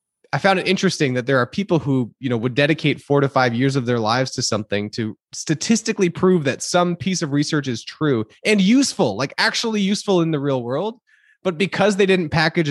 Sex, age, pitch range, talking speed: male, 20-39, 135-195 Hz, 215 wpm